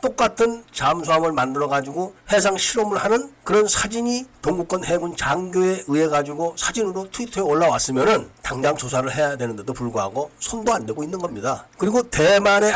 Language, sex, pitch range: Korean, male, 150-210 Hz